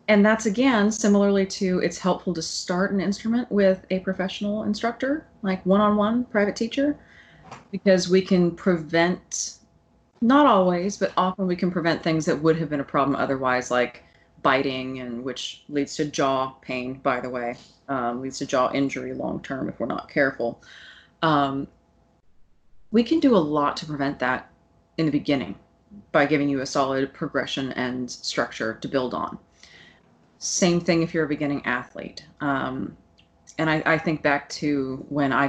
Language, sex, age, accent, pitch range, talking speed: English, female, 20-39, American, 130-185 Hz, 165 wpm